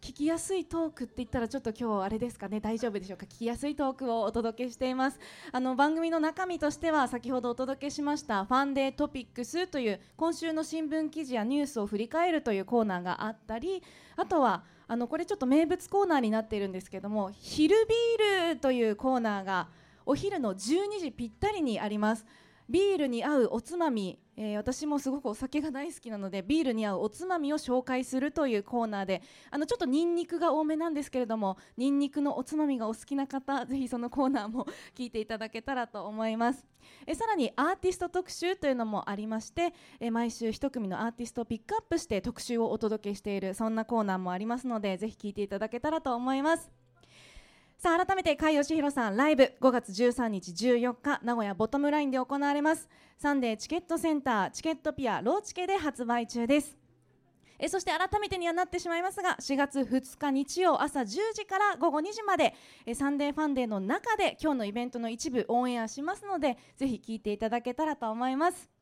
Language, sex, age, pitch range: Japanese, female, 20-39, 225-315 Hz